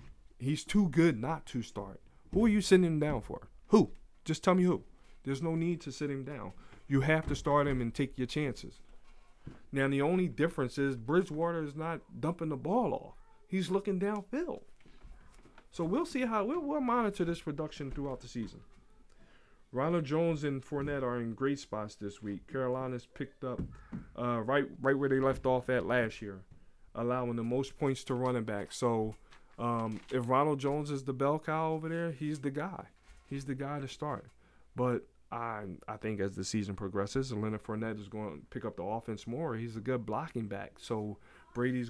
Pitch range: 110-145 Hz